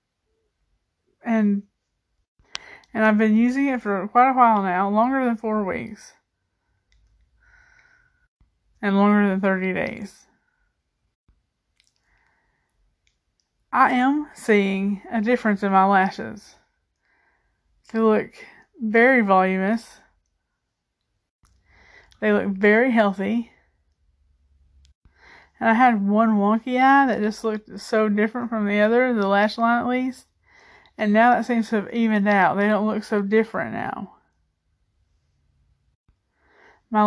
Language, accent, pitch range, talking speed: English, American, 200-230 Hz, 115 wpm